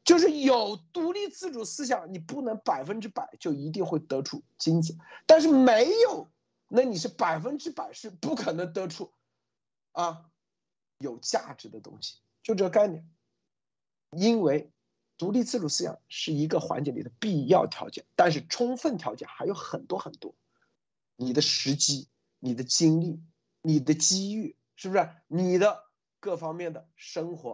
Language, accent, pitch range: Chinese, native, 145-220 Hz